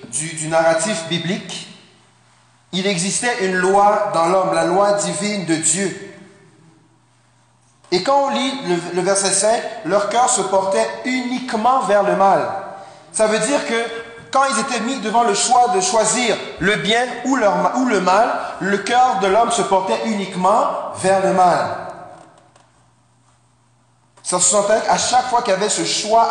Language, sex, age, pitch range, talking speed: French, male, 40-59, 175-230 Hz, 165 wpm